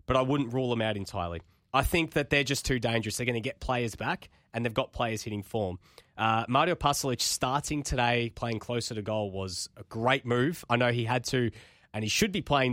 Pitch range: 110-130 Hz